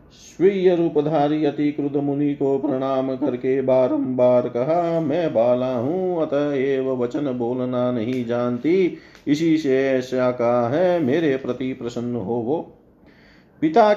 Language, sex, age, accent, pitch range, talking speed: Hindi, male, 40-59, native, 125-160 Hz, 120 wpm